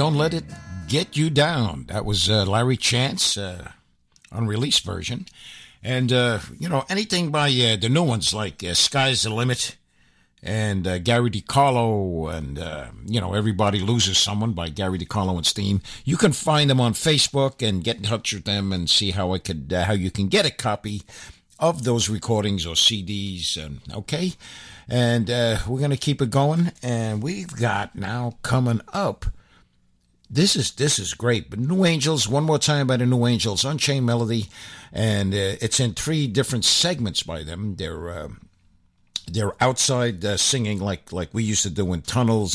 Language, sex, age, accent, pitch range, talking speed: English, male, 60-79, American, 100-125 Hz, 185 wpm